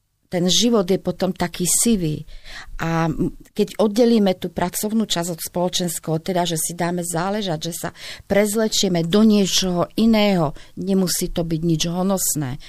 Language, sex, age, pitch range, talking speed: Slovak, female, 40-59, 155-180 Hz, 140 wpm